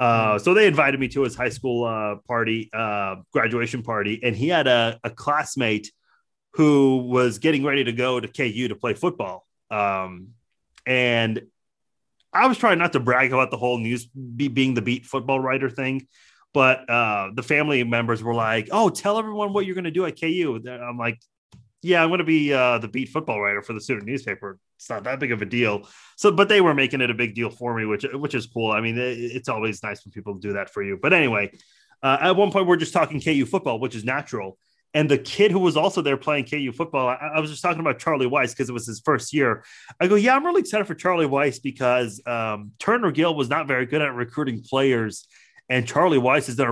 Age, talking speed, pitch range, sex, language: 30-49, 230 wpm, 115-155 Hz, male, English